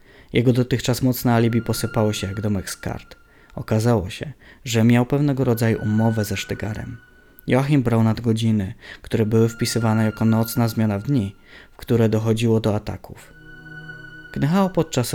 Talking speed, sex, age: 145 wpm, male, 20-39